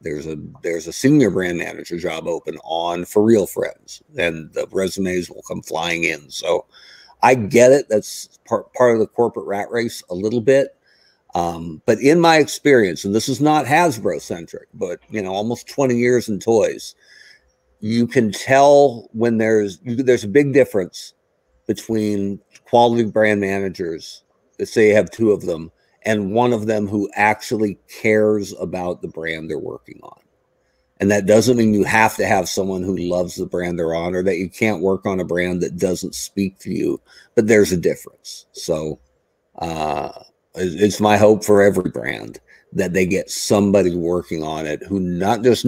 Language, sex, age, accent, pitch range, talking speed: English, male, 50-69, American, 90-120 Hz, 180 wpm